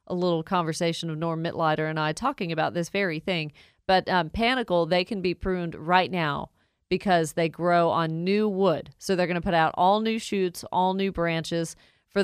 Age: 40-59